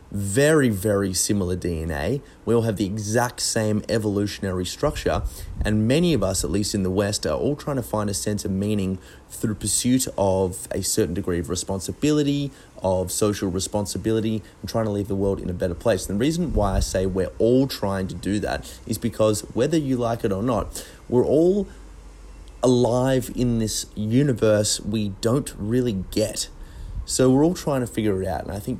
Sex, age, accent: male, 30-49, Australian